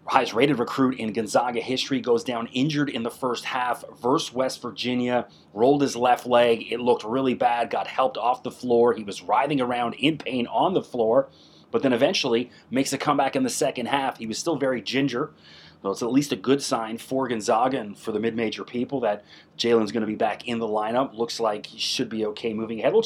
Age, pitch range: 30-49, 115-135 Hz